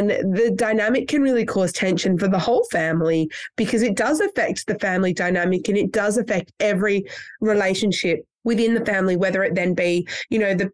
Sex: female